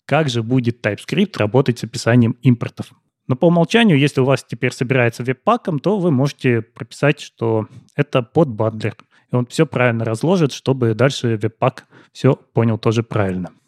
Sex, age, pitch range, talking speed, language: male, 20-39, 120-160 Hz, 160 wpm, Russian